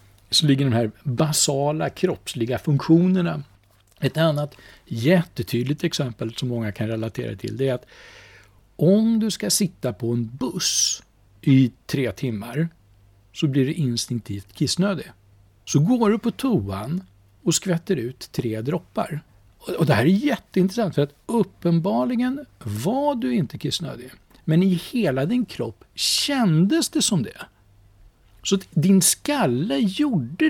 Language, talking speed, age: Swedish, 135 wpm, 60-79